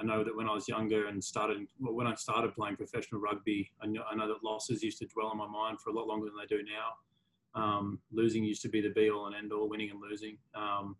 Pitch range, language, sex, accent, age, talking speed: 105-120 Hz, English, male, Australian, 20-39, 265 wpm